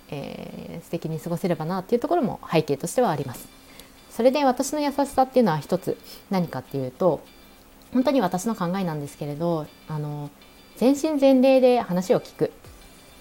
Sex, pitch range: female, 150-195 Hz